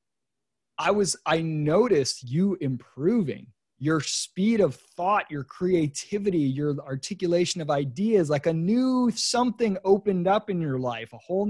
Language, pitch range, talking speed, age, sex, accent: English, 140-195 Hz, 140 wpm, 20-39, male, American